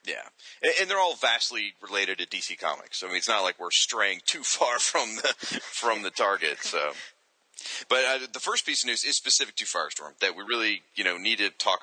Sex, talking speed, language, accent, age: male, 220 wpm, English, American, 30-49